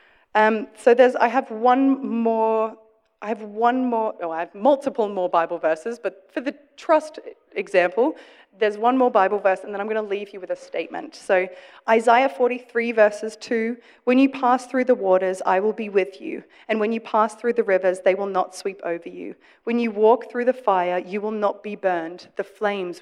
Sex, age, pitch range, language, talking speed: female, 30-49, 185-235 Hz, English, 210 wpm